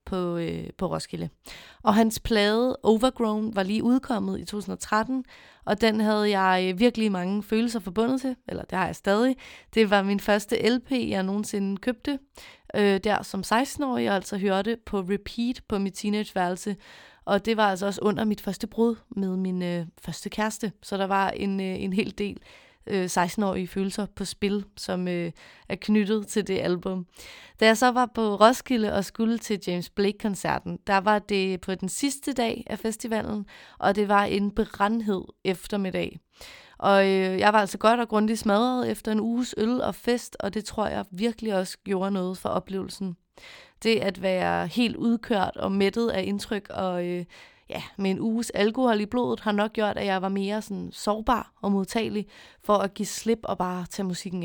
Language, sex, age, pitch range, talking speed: Danish, female, 30-49, 190-225 Hz, 185 wpm